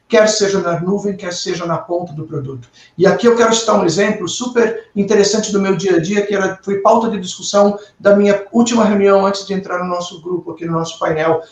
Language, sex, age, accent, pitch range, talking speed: Portuguese, male, 50-69, Brazilian, 180-205 Hz, 230 wpm